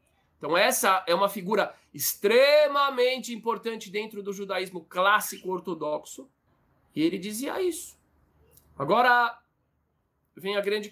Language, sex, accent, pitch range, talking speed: Portuguese, male, Brazilian, 175-240 Hz, 105 wpm